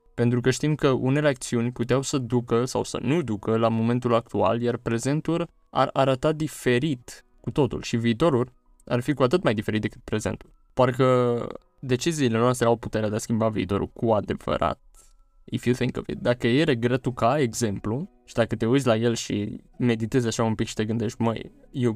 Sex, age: male, 20-39